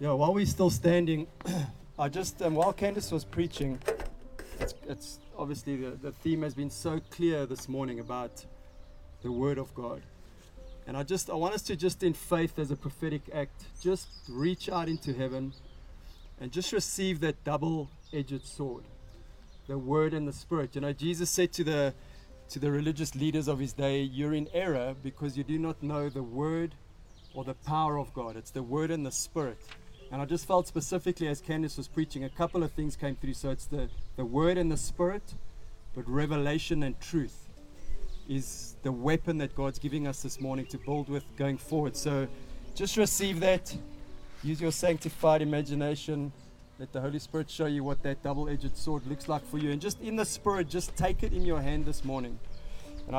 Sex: male